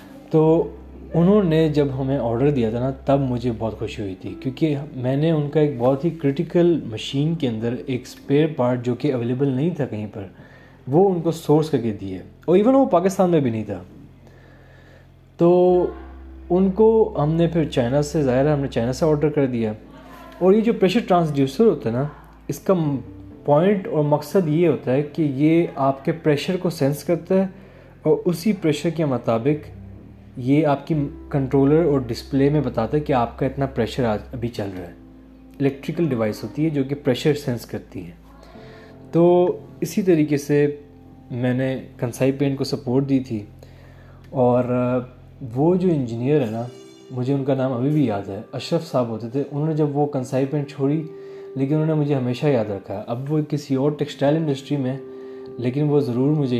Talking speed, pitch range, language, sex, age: 195 wpm, 120-155 Hz, Urdu, male, 20-39